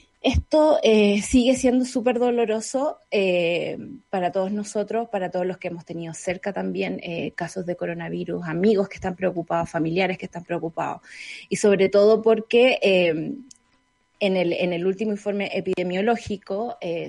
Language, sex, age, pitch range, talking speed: Spanish, female, 20-39, 180-245 Hz, 150 wpm